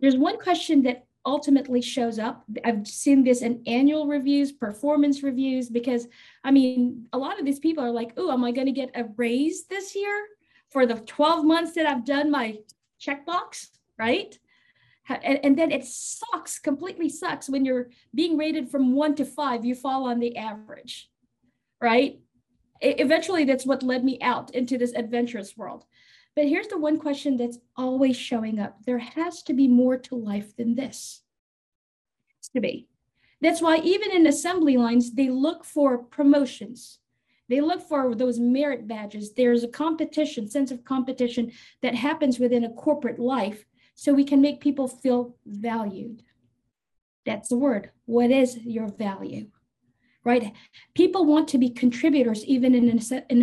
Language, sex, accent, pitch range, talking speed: English, female, American, 240-295 Hz, 165 wpm